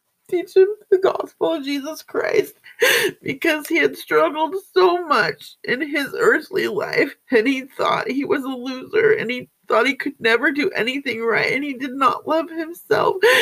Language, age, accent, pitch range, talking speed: English, 40-59, American, 280-420 Hz, 175 wpm